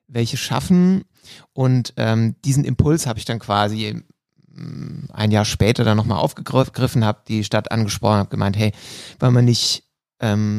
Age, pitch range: 30-49, 110-140 Hz